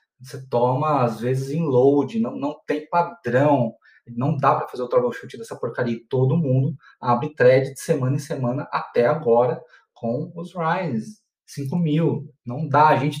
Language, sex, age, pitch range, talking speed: Portuguese, male, 20-39, 125-160 Hz, 170 wpm